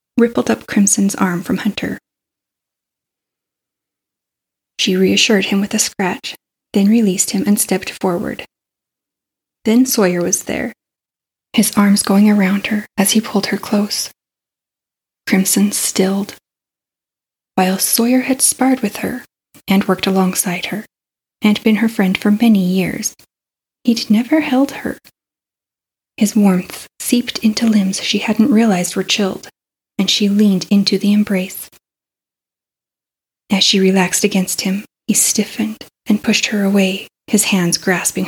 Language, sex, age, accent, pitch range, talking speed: English, female, 20-39, American, 190-220 Hz, 135 wpm